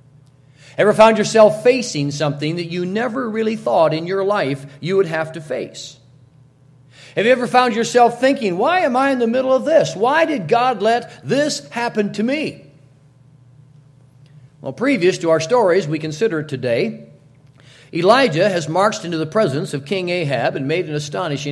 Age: 40-59